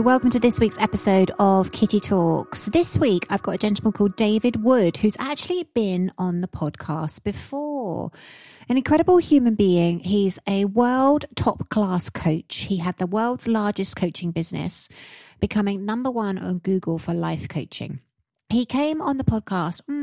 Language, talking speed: English, 160 wpm